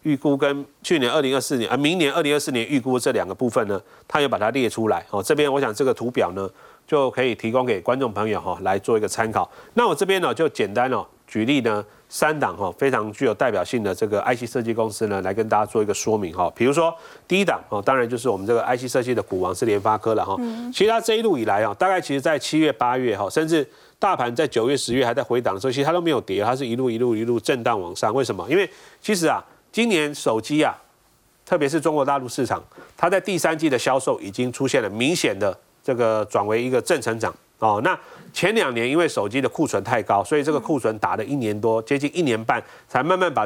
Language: Chinese